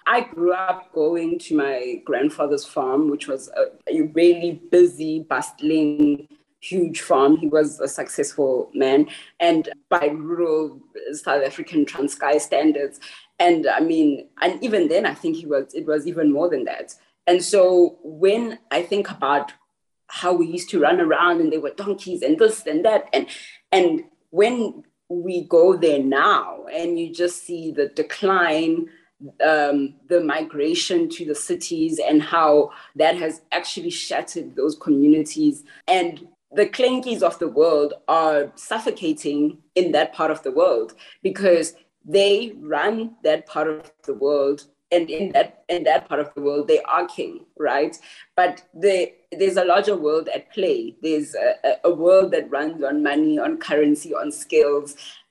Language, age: English, 20-39